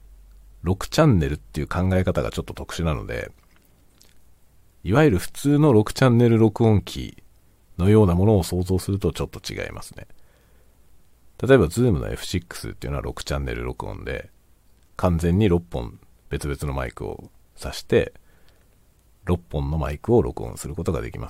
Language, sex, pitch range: Japanese, male, 80-110 Hz